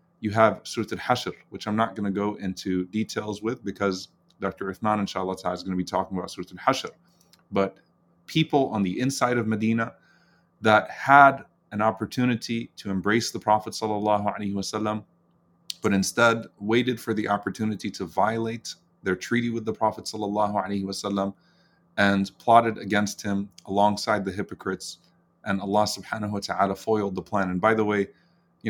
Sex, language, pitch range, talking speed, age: male, English, 100-115 Hz, 155 wpm, 30-49